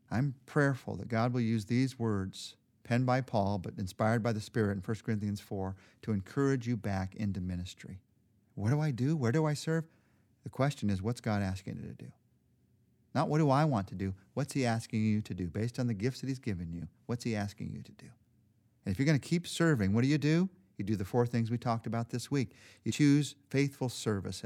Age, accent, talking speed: 40-59, American, 235 wpm